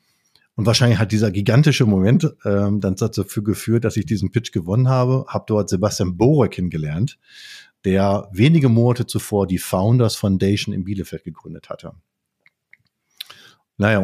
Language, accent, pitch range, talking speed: German, German, 95-115 Hz, 140 wpm